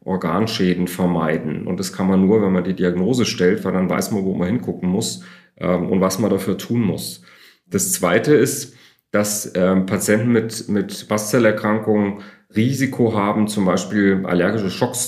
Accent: German